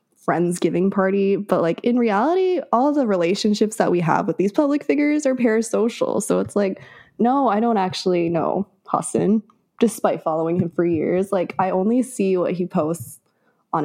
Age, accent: 20-39, American